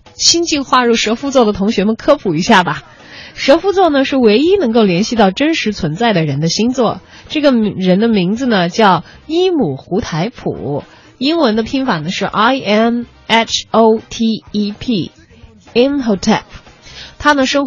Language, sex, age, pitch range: Chinese, female, 20-39, 175-245 Hz